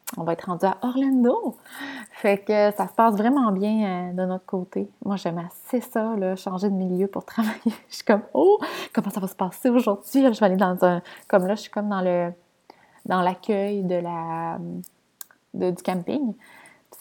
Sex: female